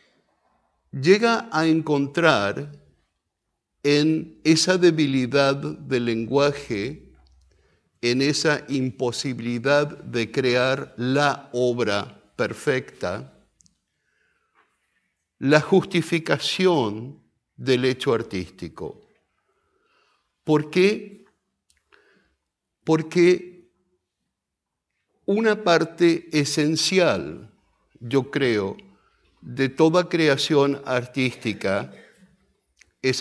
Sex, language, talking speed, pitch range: male, Portuguese, 60 wpm, 125-165 Hz